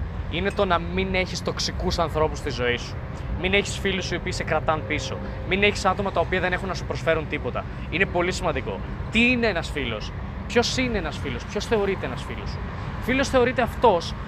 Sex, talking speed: male, 200 wpm